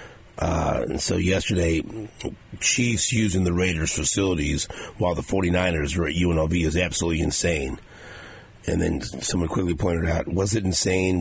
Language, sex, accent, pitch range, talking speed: English, male, American, 85-100 Hz, 145 wpm